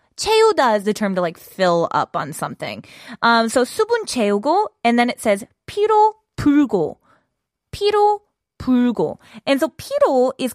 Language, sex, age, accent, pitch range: Korean, female, 20-39, American, 190-275 Hz